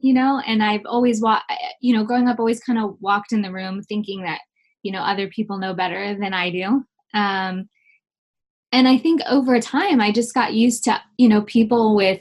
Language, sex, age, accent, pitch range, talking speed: English, female, 20-39, American, 195-250 Hz, 210 wpm